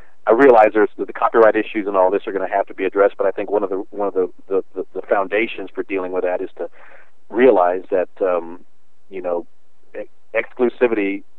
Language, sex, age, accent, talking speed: English, male, 40-59, American, 220 wpm